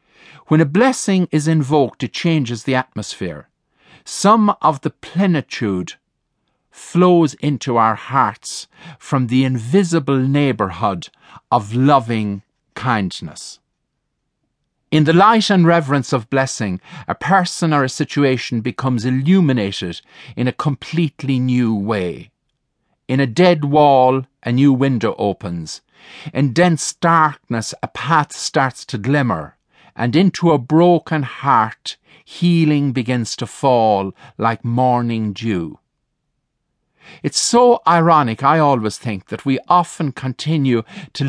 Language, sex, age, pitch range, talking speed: English, male, 50-69, 120-160 Hz, 120 wpm